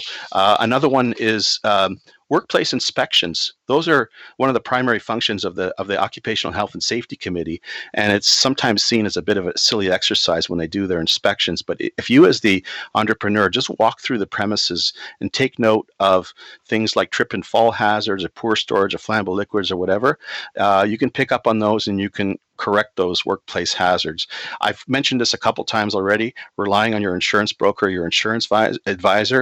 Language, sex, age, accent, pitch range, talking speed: English, male, 40-59, American, 95-110 Hz, 200 wpm